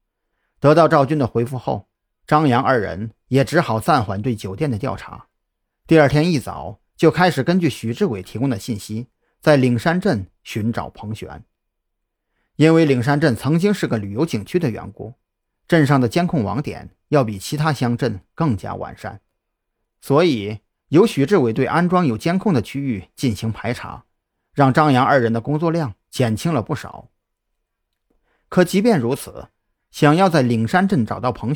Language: Chinese